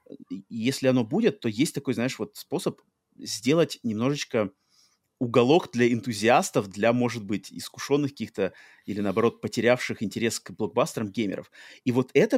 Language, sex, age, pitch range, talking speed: Russian, male, 30-49, 115-145 Hz, 140 wpm